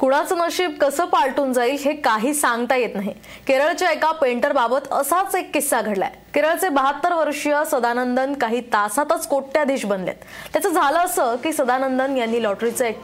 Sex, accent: female, native